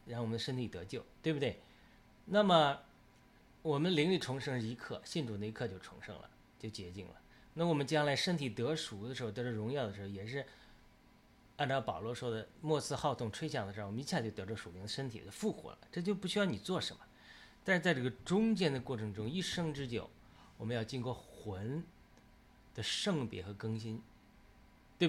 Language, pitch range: Chinese, 110-155 Hz